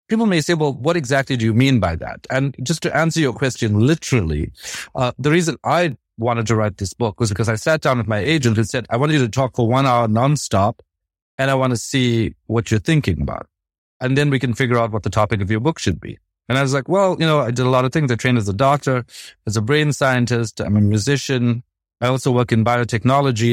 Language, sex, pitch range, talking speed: English, male, 110-145 Hz, 250 wpm